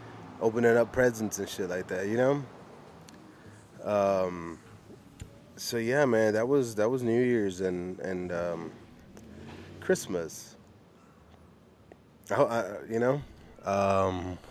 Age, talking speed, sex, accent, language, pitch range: 20-39, 115 wpm, male, American, English, 100-125 Hz